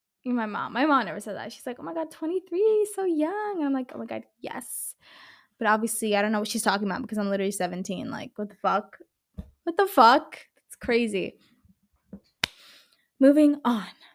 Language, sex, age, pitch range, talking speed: English, female, 20-39, 210-275 Hz, 190 wpm